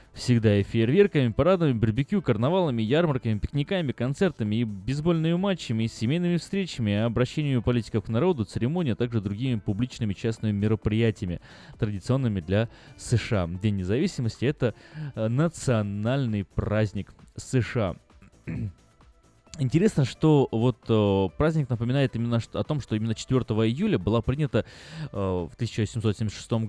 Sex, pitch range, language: male, 105-130 Hz, Russian